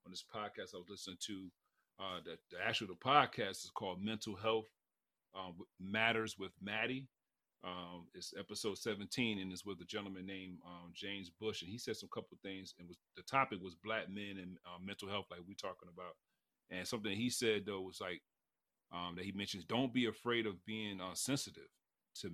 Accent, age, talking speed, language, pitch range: American, 30-49, 205 wpm, English, 90-110 Hz